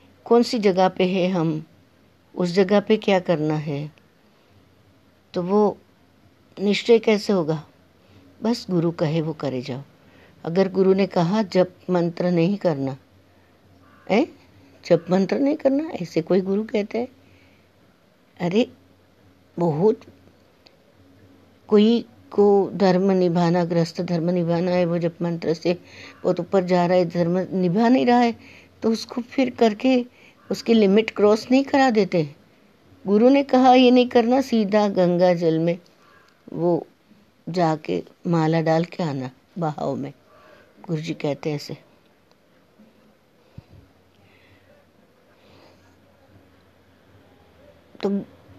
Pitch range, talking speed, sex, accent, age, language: 130-210 Hz, 120 wpm, female, native, 60-79, Hindi